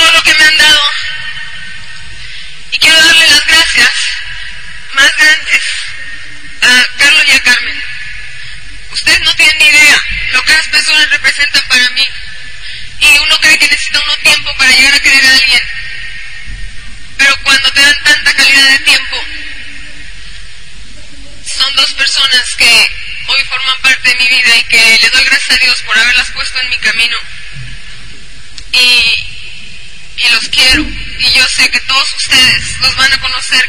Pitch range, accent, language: 250-300 Hz, Mexican, Spanish